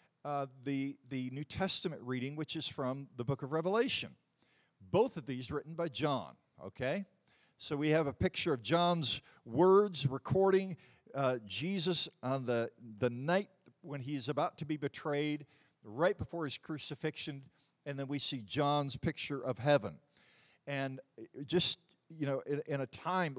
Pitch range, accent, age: 125-155 Hz, American, 50-69